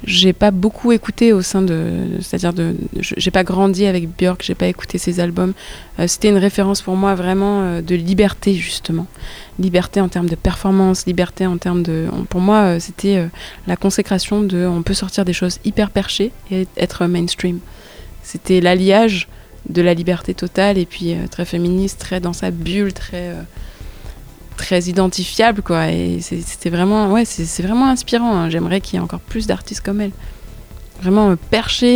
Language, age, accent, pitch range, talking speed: French, 20-39, French, 175-205 Hz, 175 wpm